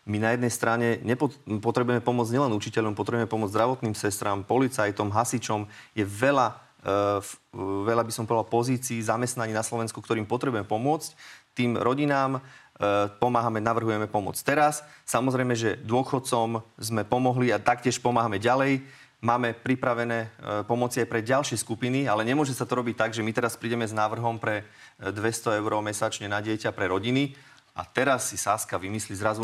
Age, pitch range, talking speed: 30-49, 110-130 Hz, 155 wpm